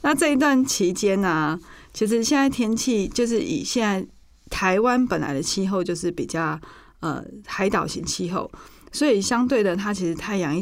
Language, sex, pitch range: Chinese, female, 180-240 Hz